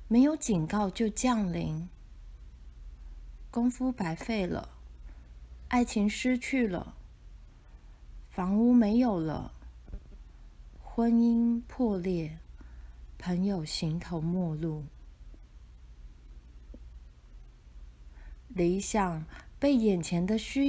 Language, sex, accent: Chinese, female, native